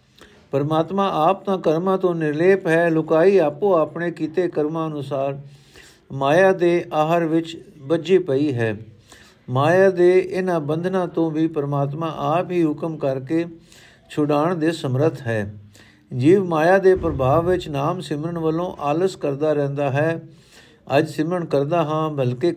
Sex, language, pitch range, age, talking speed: male, Punjabi, 140-170 Hz, 60-79, 140 wpm